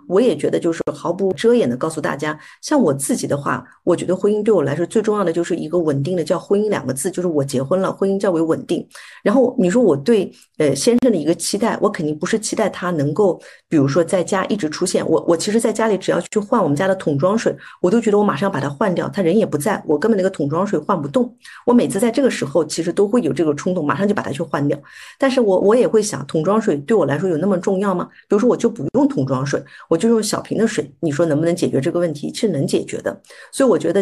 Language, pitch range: Chinese, 155-210 Hz